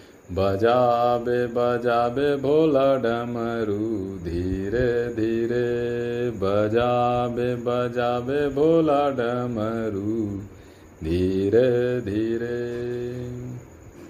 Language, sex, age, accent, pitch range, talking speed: Hindi, male, 40-59, native, 115-140 Hz, 55 wpm